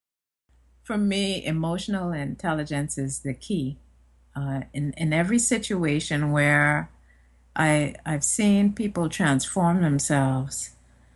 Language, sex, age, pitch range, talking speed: English, female, 50-69, 130-170 Hz, 100 wpm